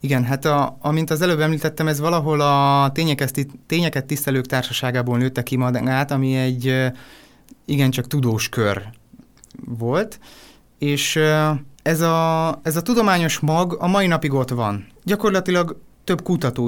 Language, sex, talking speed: Hungarian, male, 135 wpm